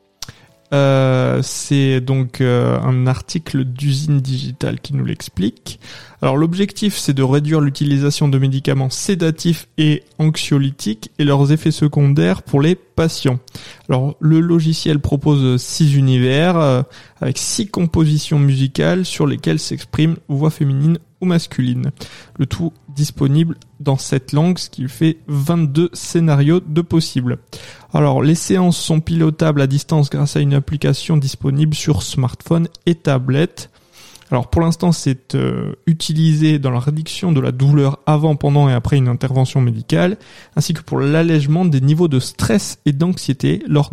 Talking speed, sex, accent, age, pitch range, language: 145 wpm, male, French, 20-39, 135-160 Hz, French